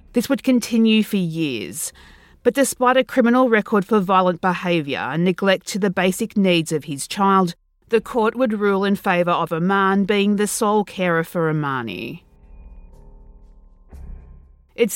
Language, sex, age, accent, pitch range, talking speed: English, female, 40-59, Australian, 170-230 Hz, 150 wpm